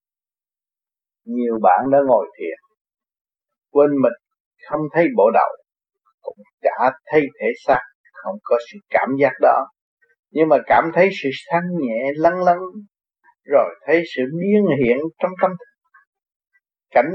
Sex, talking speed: male, 135 wpm